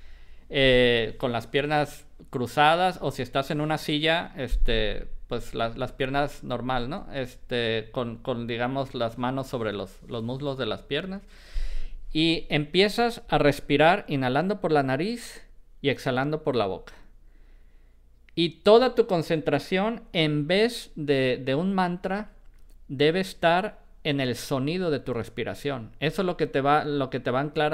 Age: 50-69